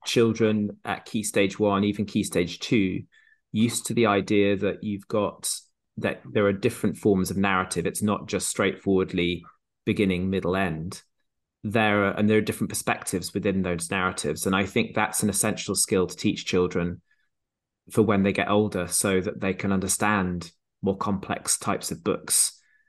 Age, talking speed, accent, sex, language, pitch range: 20-39, 170 wpm, British, male, English, 95-110 Hz